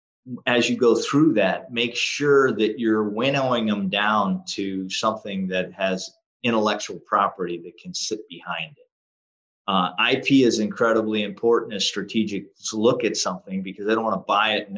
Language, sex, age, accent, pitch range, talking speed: English, male, 30-49, American, 100-125 Hz, 170 wpm